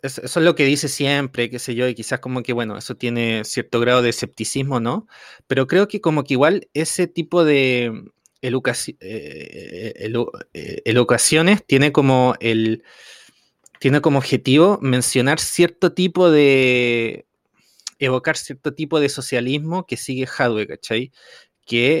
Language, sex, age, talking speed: Spanish, male, 20-39, 145 wpm